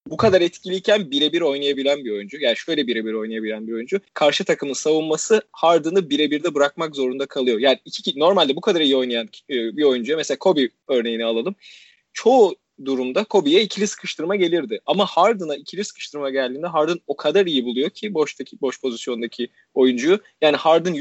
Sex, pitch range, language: male, 135-180 Hz, Turkish